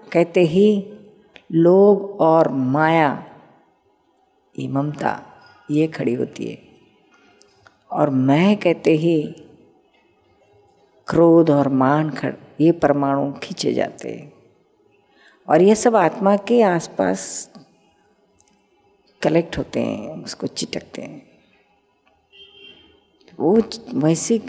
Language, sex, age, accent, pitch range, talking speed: Hindi, female, 50-69, native, 155-200 Hz, 90 wpm